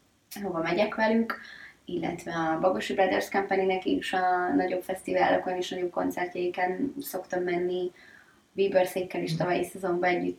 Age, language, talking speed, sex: 20-39, Hungarian, 135 wpm, female